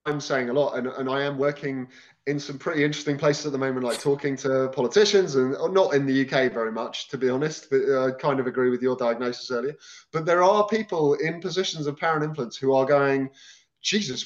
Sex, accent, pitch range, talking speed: male, British, 135-180 Hz, 225 wpm